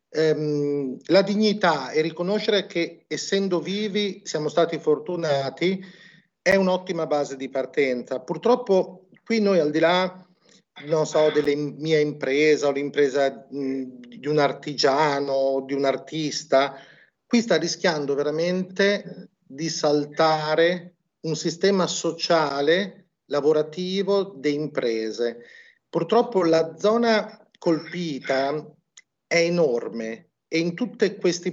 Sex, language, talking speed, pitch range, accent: male, Italian, 110 wpm, 145-185 Hz, native